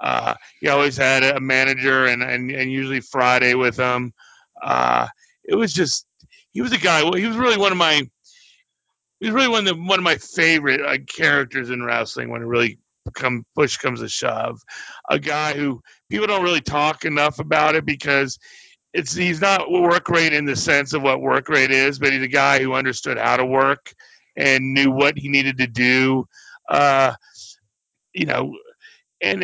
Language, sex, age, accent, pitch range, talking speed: English, male, 40-59, American, 130-170 Hz, 190 wpm